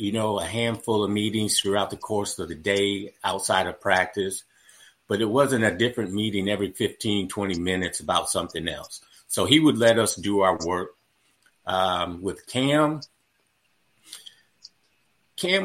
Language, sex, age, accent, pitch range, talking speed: English, male, 50-69, American, 100-125 Hz, 155 wpm